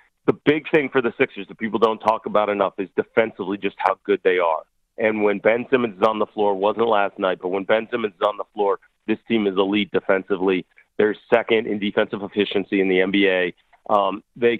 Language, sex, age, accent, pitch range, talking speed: English, male, 40-59, American, 100-115 Hz, 220 wpm